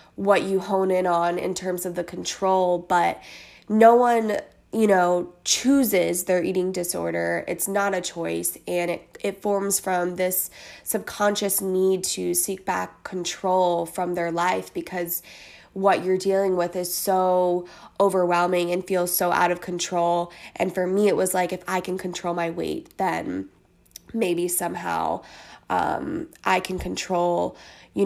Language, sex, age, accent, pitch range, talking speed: English, female, 20-39, American, 175-190 Hz, 155 wpm